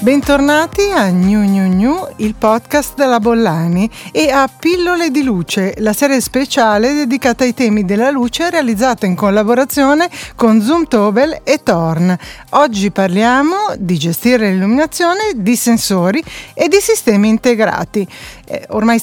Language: Italian